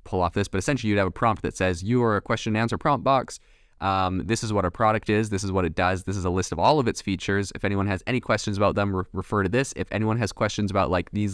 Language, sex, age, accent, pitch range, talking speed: English, male, 20-39, American, 95-110 Hz, 305 wpm